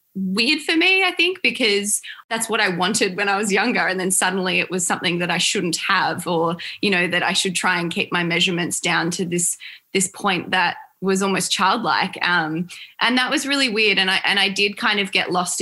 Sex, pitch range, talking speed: female, 170-195 Hz, 225 wpm